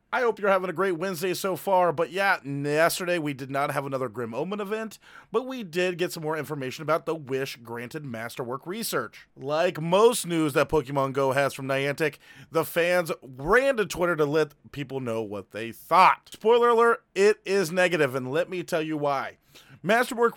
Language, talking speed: English, 190 wpm